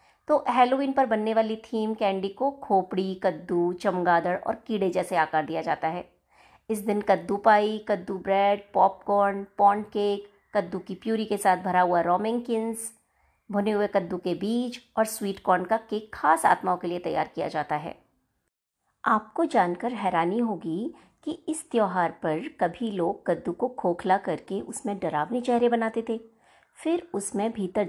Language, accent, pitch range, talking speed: Hindi, native, 180-235 Hz, 160 wpm